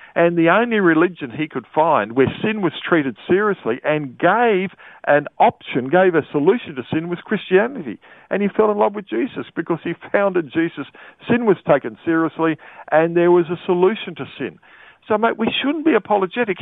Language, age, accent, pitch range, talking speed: English, 50-69, Australian, 145-195 Hz, 185 wpm